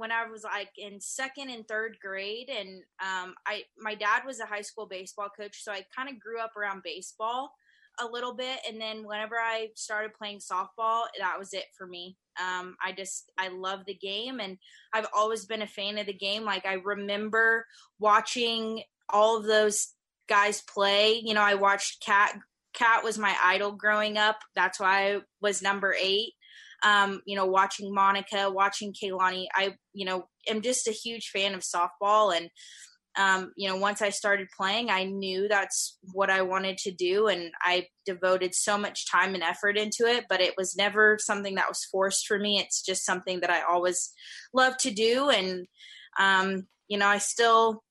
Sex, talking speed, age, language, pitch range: female, 190 wpm, 20-39, English, 190-220 Hz